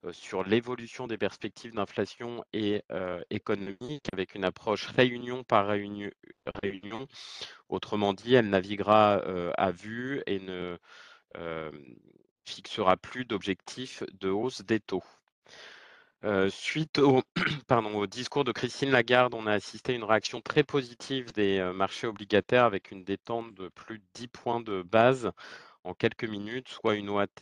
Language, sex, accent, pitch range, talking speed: French, male, French, 100-120 Hz, 150 wpm